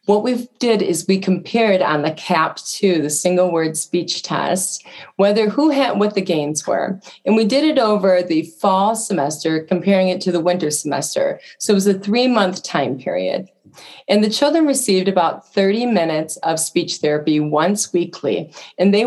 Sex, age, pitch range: female, 30-49, 175-230 Hz